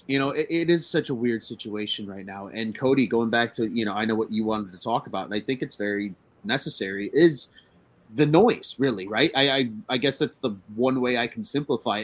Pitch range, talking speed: 110-150 Hz, 240 wpm